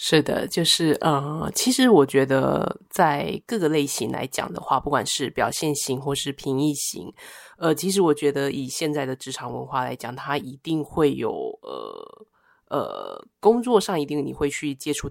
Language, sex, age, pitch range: Chinese, female, 20-39, 140-180 Hz